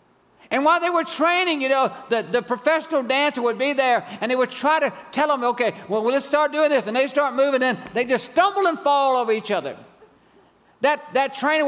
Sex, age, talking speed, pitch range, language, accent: male, 50-69, 220 wpm, 205-340 Hz, English, American